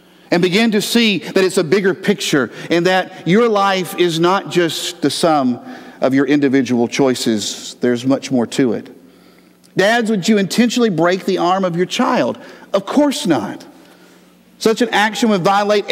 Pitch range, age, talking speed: 145-200 Hz, 50-69, 170 wpm